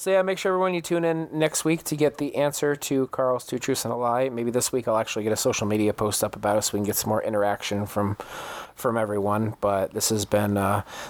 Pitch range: 110-135 Hz